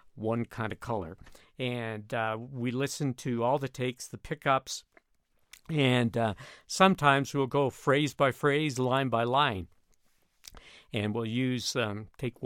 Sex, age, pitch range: male, 60-79, 115-145 Hz